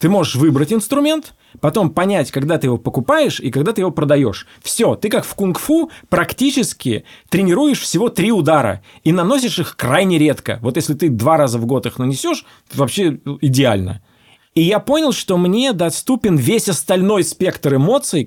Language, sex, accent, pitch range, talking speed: Russian, male, native, 125-180 Hz, 170 wpm